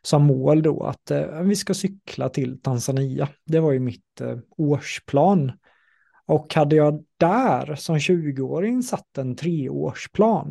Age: 30-49